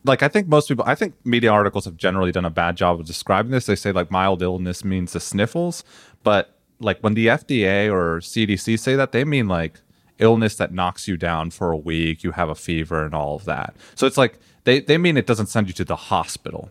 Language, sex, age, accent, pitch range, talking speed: English, male, 30-49, American, 90-120 Hz, 240 wpm